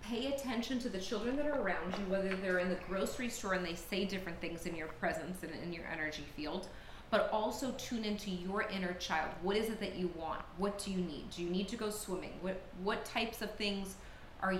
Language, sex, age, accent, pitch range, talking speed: English, female, 30-49, American, 175-205 Hz, 235 wpm